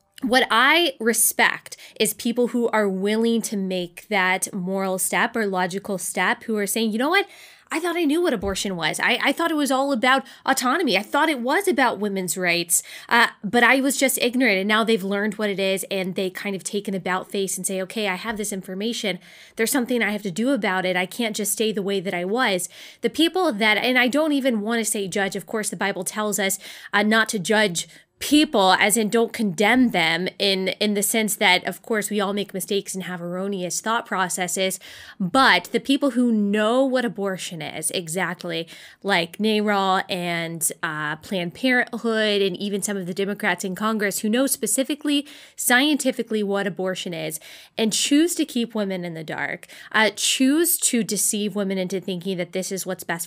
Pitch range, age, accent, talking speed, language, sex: 190-235 Hz, 20-39, American, 205 wpm, English, female